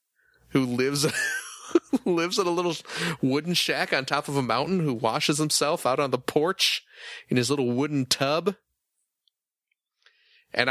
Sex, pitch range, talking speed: male, 120-165 Hz, 145 wpm